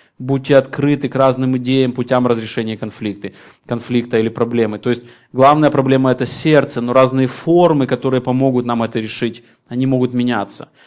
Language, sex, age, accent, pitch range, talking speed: Russian, male, 20-39, native, 125-145 Hz, 155 wpm